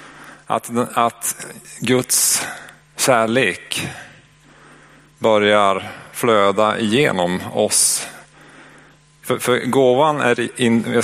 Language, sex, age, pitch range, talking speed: Swedish, male, 30-49, 105-125 Hz, 75 wpm